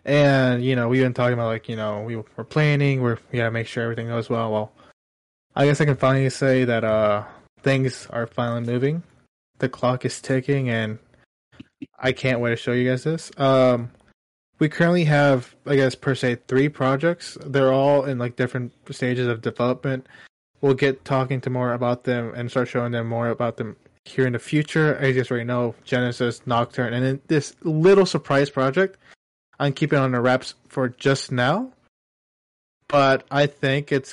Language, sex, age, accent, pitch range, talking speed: English, male, 20-39, American, 120-140 Hz, 190 wpm